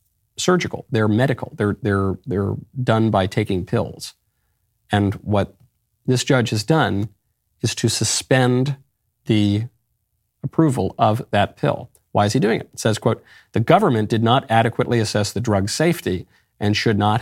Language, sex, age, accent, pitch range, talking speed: English, male, 50-69, American, 100-120 Hz, 155 wpm